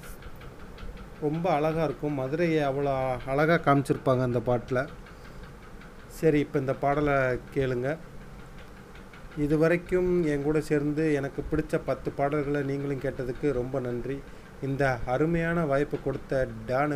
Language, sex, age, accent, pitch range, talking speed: Tamil, male, 30-49, native, 130-150 Hz, 110 wpm